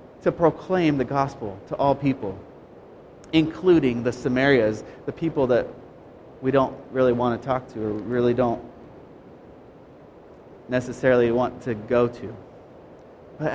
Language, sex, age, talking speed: English, male, 30-49, 130 wpm